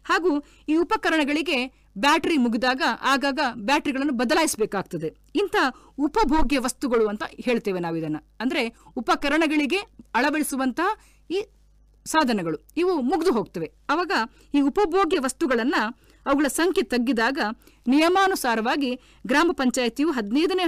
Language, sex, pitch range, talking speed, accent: Kannada, female, 240-320 Hz, 100 wpm, native